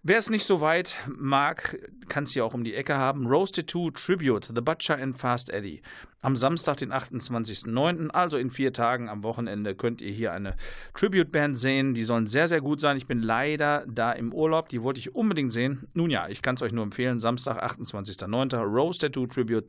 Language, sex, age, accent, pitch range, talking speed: German, male, 50-69, German, 115-145 Hz, 205 wpm